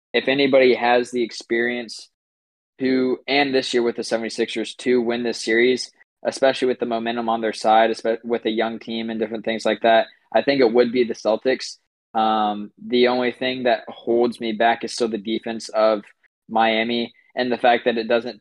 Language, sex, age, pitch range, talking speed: English, male, 20-39, 110-120 Hz, 190 wpm